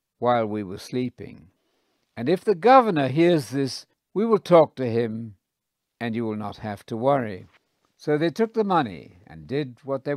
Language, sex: English, male